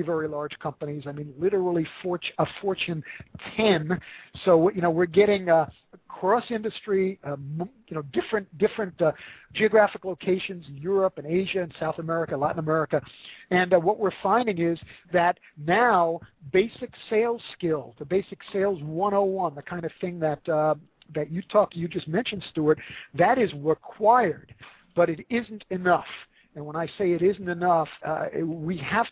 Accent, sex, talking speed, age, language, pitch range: American, male, 165 wpm, 50-69, English, 160-195 Hz